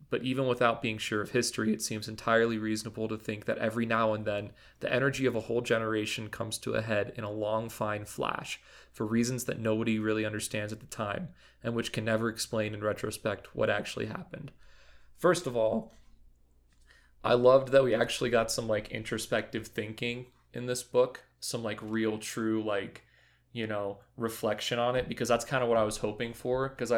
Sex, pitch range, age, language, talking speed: male, 105-120 Hz, 20-39, English, 195 wpm